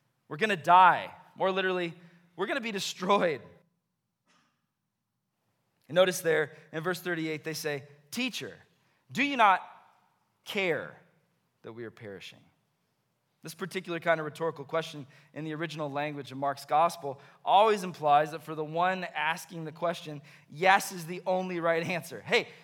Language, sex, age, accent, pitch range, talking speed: English, male, 20-39, American, 135-180 Hz, 150 wpm